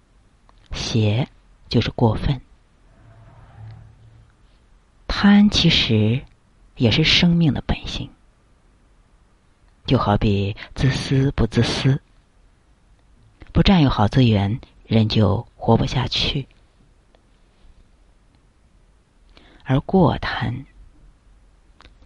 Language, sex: Chinese, female